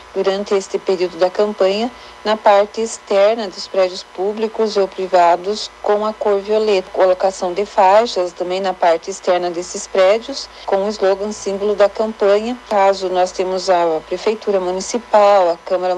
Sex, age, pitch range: female, 40-59, 180-210 Hz